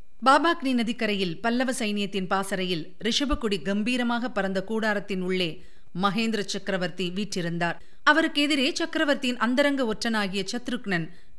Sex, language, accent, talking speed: female, Tamil, native, 100 wpm